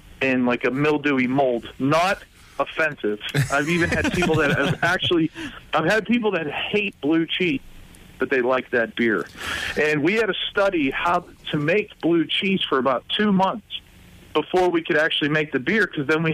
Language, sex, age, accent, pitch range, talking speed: English, male, 40-59, American, 135-175 Hz, 185 wpm